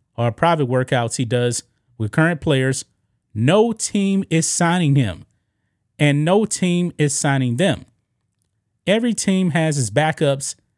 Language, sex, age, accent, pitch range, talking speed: English, male, 30-49, American, 115-150 Hz, 135 wpm